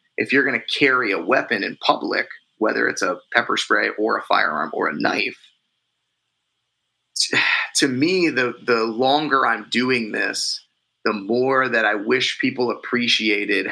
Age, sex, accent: 30-49, male, American